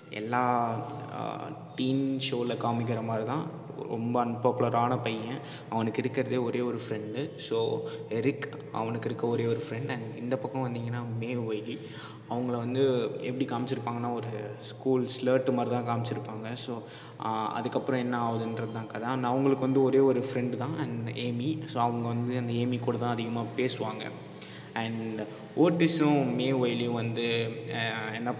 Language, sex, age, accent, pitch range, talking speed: English, male, 20-39, Indian, 115-140 Hz, 110 wpm